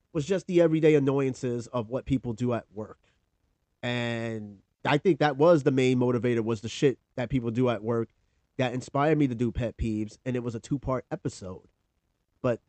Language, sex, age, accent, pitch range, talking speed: English, male, 30-49, American, 115-155 Hz, 195 wpm